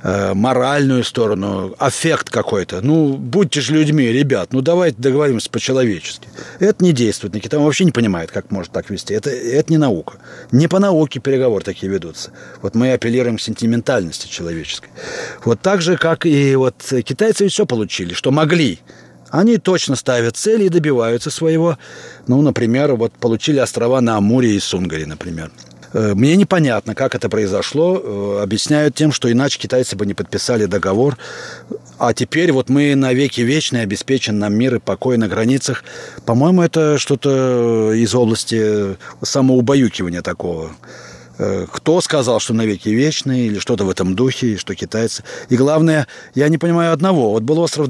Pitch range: 110-155 Hz